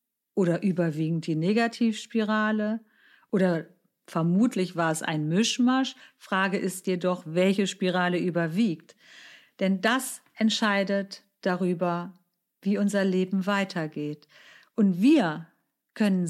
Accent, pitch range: German, 180-225 Hz